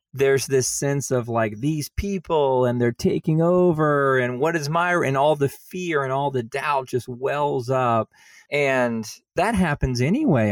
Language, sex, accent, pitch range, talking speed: English, male, American, 115-145 Hz, 170 wpm